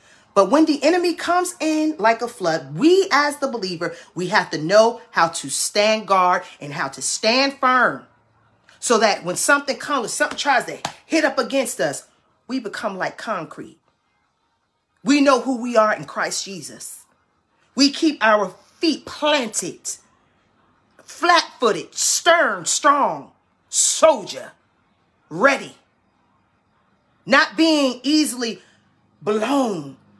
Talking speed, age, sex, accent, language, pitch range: 125 wpm, 30-49, female, American, English, 220-305 Hz